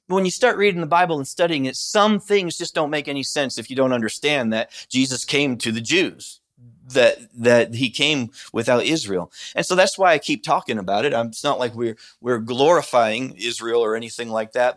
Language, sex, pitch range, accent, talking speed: English, male, 115-150 Hz, American, 210 wpm